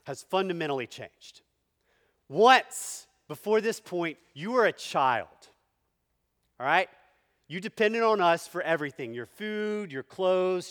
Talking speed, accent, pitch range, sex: 125 wpm, American, 125-195 Hz, male